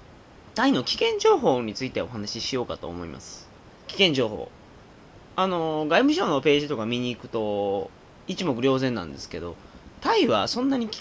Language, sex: Japanese, male